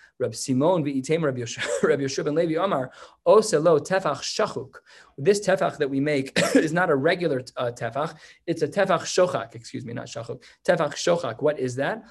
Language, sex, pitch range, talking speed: English, male, 135-170 Hz, 130 wpm